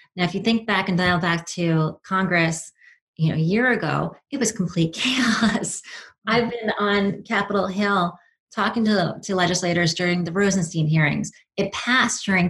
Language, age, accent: English, 30-49, American